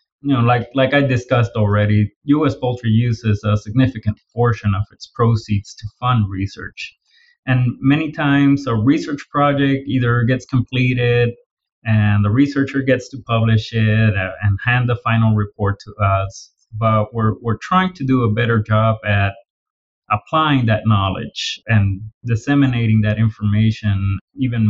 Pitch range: 105-130 Hz